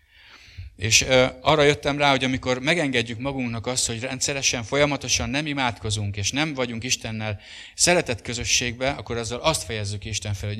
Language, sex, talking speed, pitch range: English, male, 155 wpm, 90-125 Hz